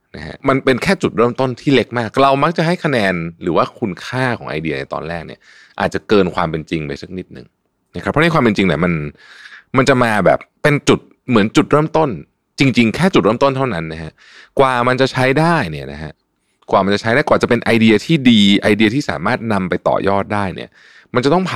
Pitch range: 85-130 Hz